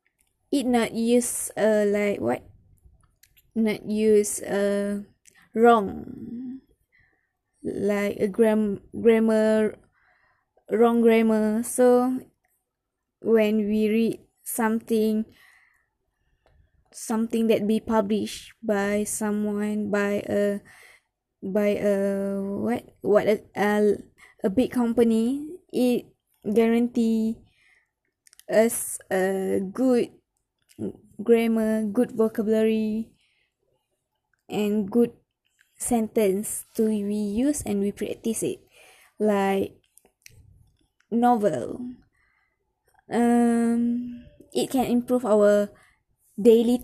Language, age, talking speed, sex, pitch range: English, 20-39, 80 wpm, female, 205-235 Hz